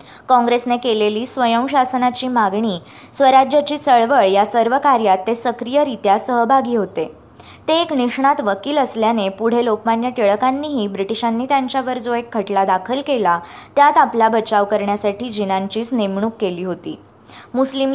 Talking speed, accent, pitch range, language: 90 wpm, native, 205-255 Hz, Marathi